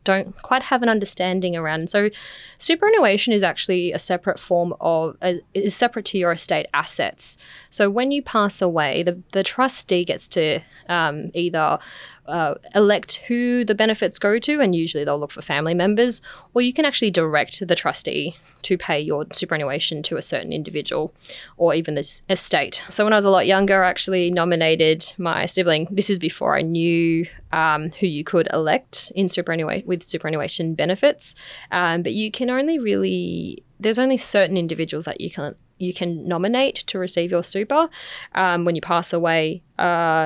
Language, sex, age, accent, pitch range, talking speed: English, female, 20-39, Australian, 165-195 Hz, 175 wpm